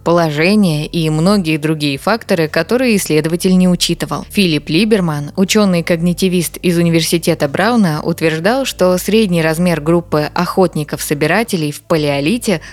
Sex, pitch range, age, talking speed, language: female, 160-205 Hz, 20-39, 110 wpm, Russian